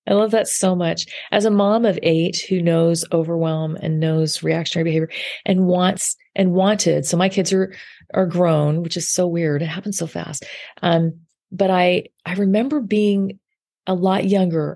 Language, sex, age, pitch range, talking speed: English, female, 30-49, 185-245 Hz, 180 wpm